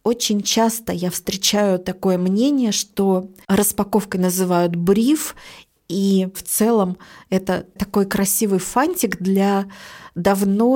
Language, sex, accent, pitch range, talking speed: Russian, female, native, 190-225 Hz, 105 wpm